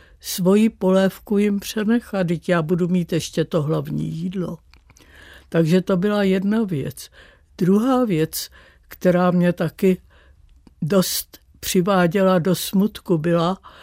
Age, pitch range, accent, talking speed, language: 60-79, 165-195 Hz, native, 115 wpm, Czech